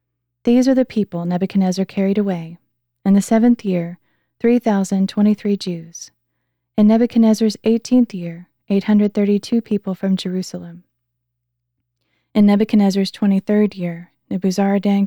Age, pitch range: 20-39, 175-215 Hz